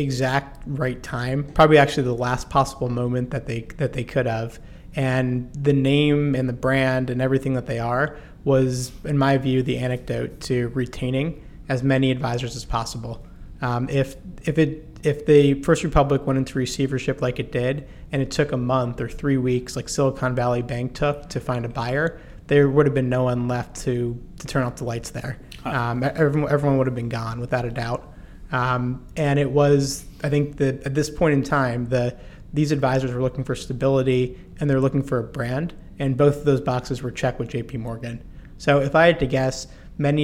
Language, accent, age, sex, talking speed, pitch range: English, American, 30-49, male, 200 wpm, 125-145 Hz